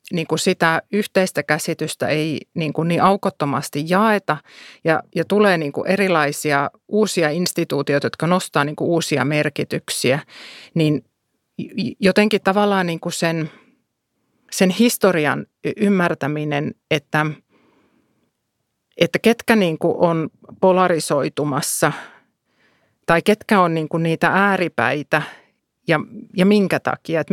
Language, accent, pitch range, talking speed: Finnish, native, 155-190 Hz, 115 wpm